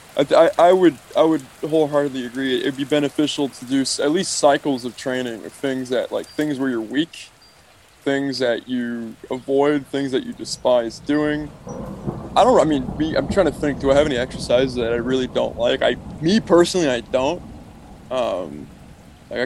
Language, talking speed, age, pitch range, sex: English, 185 wpm, 20-39, 125-145 Hz, male